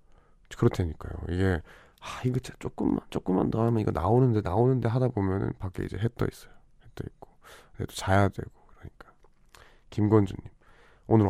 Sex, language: male, Korean